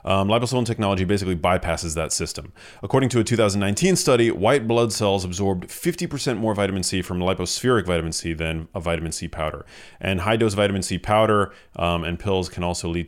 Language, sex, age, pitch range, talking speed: English, male, 30-49, 95-125 Hz, 185 wpm